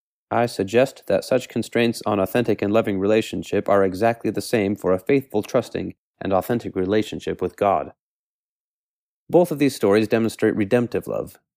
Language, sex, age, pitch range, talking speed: English, male, 30-49, 100-120 Hz, 155 wpm